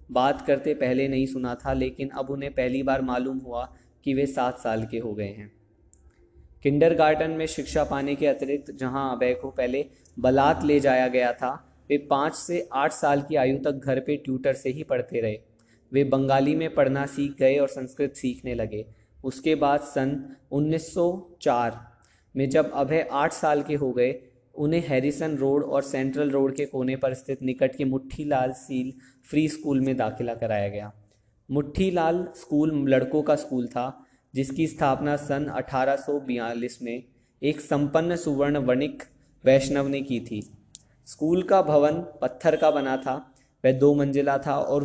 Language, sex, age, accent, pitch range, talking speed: Hindi, male, 20-39, native, 125-145 Hz, 165 wpm